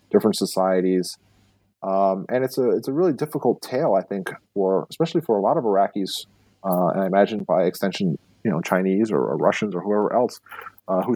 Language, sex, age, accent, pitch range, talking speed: English, male, 30-49, American, 95-110 Hz, 200 wpm